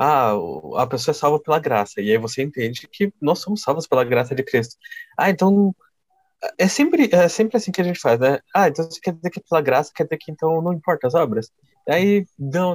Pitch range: 125-190 Hz